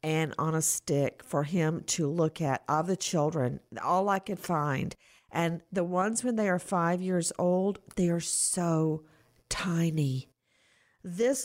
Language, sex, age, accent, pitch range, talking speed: English, female, 50-69, American, 165-225 Hz, 155 wpm